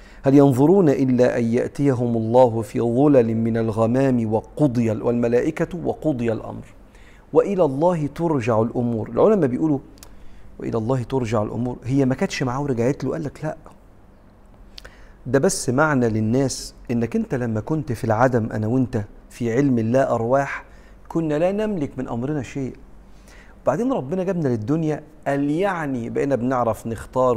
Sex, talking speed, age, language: male, 140 wpm, 50-69, Arabic